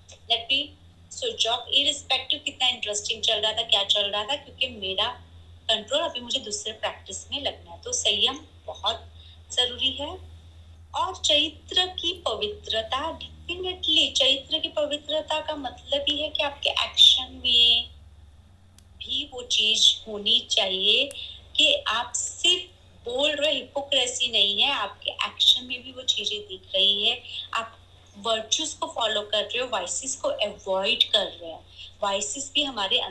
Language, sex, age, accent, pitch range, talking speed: Hindi, female, 30-49, native, 190-265 Hz, 80 wpm